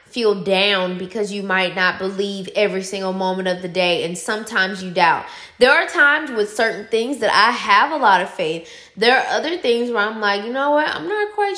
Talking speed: 225 wpm